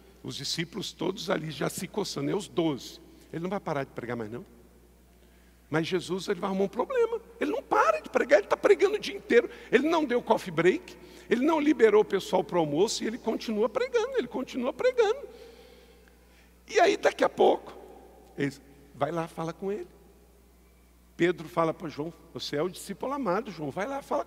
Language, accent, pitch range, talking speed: Portuguese, Brazilian, 155-225 Hz, 195 wpm